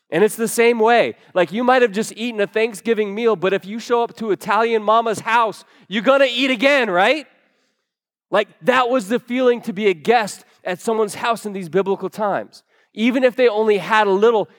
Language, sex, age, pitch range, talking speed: English, male, 20-39, 150-215 Hz, 215 wpm